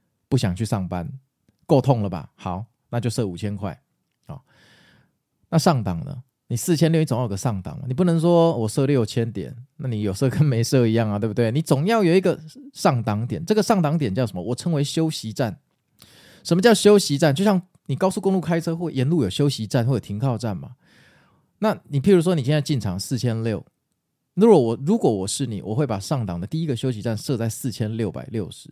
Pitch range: 110-150 Hz